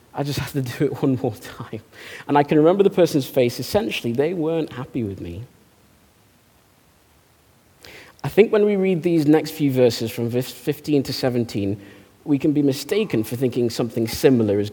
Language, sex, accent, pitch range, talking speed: English, male, British, 110-140 Hz, 180 wpm